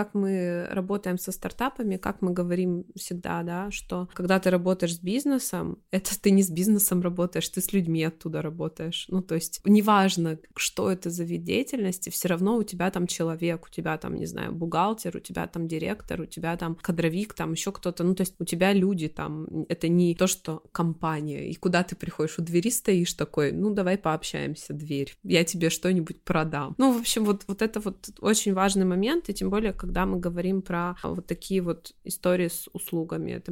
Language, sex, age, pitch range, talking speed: Russian, female, 20-39, 170-195 Hz, 200 wpm